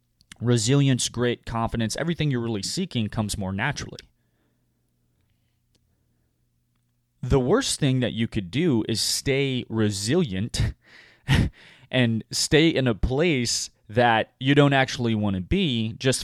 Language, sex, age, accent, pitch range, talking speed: English, male, 20-39, American, 100-120 Hz, 120 wpm